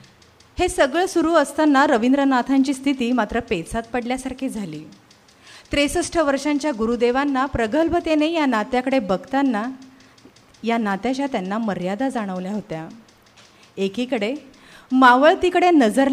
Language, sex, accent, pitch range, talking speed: Marathi, female, native, 205-275 Hz, 100 wpm